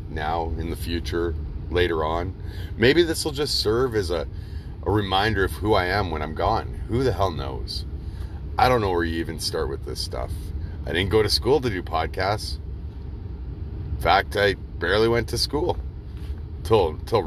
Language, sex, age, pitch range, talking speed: English, male, 30-49, 80-90 Hz, 185 wpm